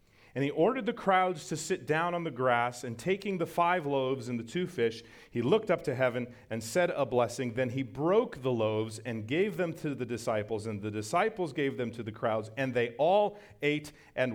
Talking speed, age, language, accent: 220 wpm, 40-59, English, American